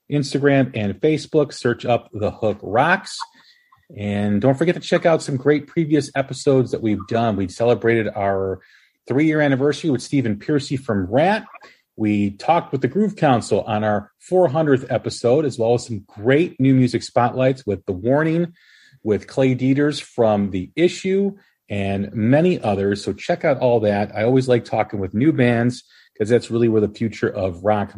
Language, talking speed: English, 175 wpm